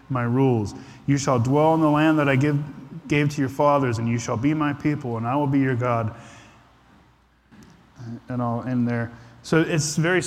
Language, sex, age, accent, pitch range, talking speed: English, male, 20-39, American, 120-145 Hz, 200 wpm